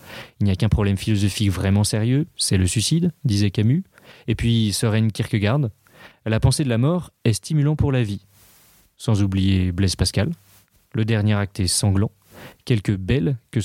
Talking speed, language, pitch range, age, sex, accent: 170 wpm, French, 100-130 Hz, 30-49, male, French